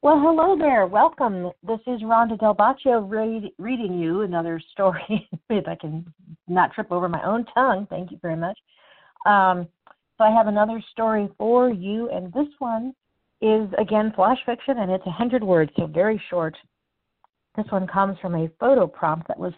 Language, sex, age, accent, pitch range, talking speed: English, female, 50-69, American, 175-215 Hz, 175 wpm